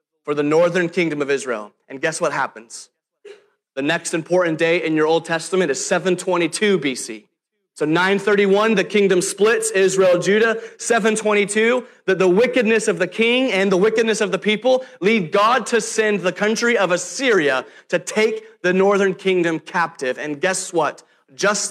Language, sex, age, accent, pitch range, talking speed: English, male, 30-49, American, 180-230 Hz, 165 wpm